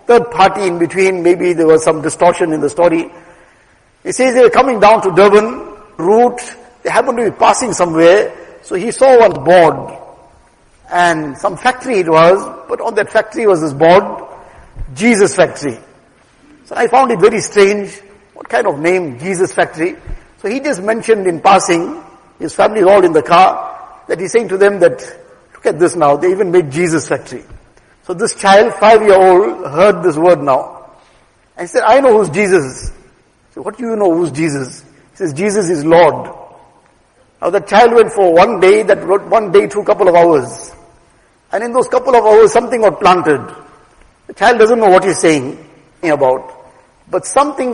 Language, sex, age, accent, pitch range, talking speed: English, male, 60-79, Indian, 175-225 Hz, 185 wpm